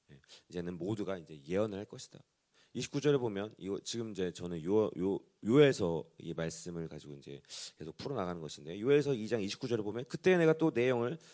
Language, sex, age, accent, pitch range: Korean, male, 30-49, native, 95-155 Hz